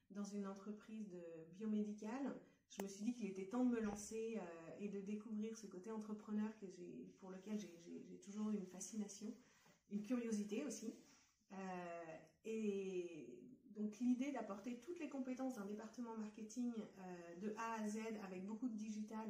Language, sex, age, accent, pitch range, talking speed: French, female, 40-59, French, 195-230 Hz, 170 wpm